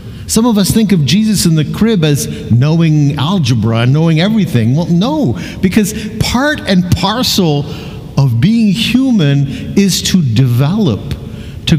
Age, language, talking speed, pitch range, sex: 50-69, English, 135 wpm, 130-205 Hz, male